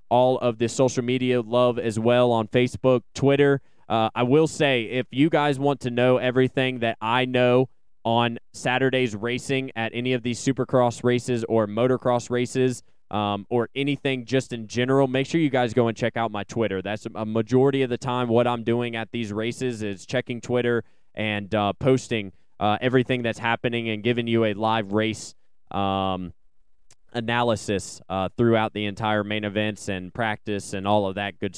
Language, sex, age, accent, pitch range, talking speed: English, male, 20-39, American, 110-125 Hz, 180 wpm